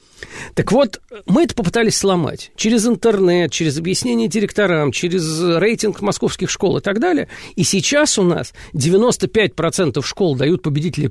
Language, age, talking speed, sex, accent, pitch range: Russian, 50-69, 140 wpm, male, native, 145-200 Hz